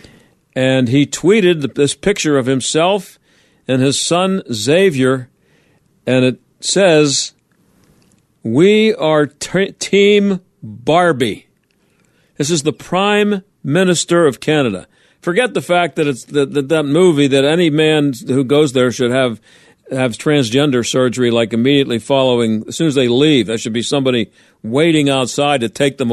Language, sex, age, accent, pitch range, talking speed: English, male, 50-69, American, 135-200 Hz, 145 wpm